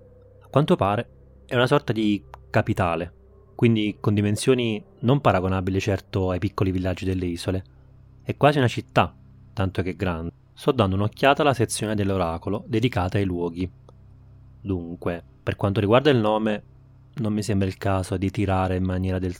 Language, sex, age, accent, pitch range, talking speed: Italian, male, 20-39, native, 90-120 Hz, 155 wpm